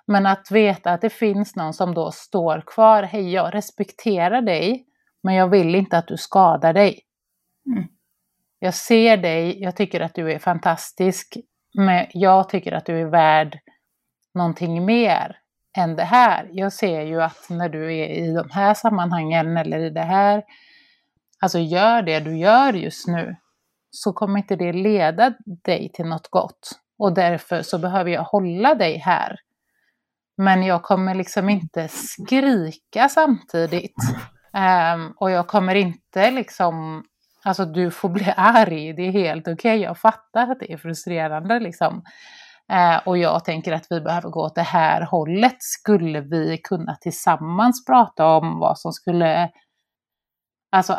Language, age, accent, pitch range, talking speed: Swedish, 30-49, native, 165-210 Hz, 155 wpm